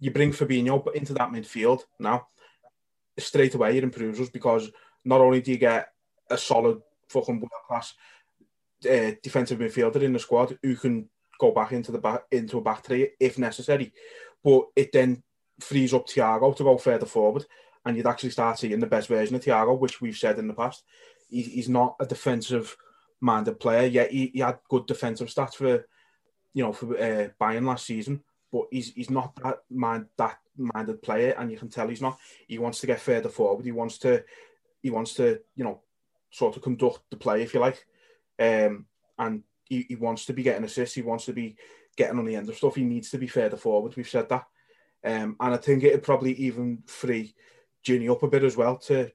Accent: British